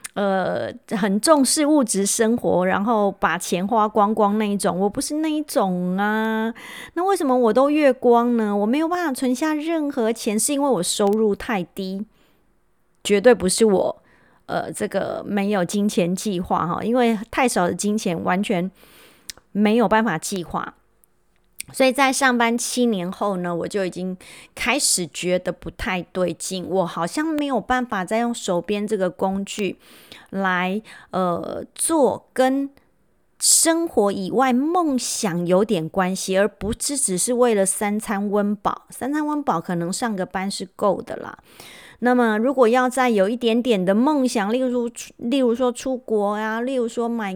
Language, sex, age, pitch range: Chinese, female, 30-49, 190-250 Hz